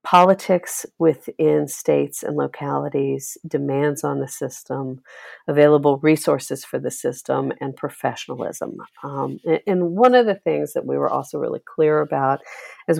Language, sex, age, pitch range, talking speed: English, female, 50-69, 135-165 Hz, 140 wpm